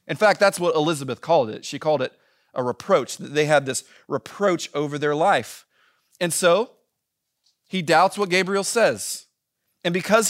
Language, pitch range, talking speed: English, 165-205 Hz, 165 wpm